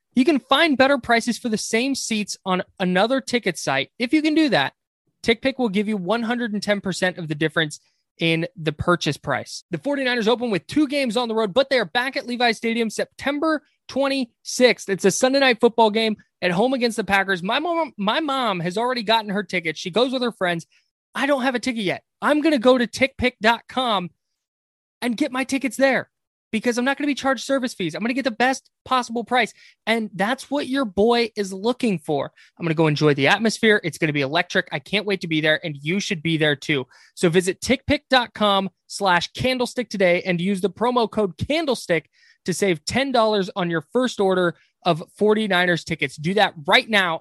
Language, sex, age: English, male, 20-39